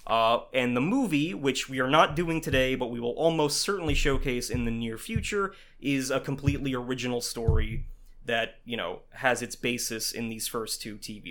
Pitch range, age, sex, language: 120-155 Hz, 20-39, male, English